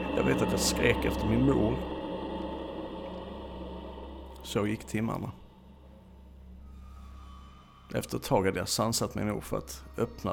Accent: Norwegian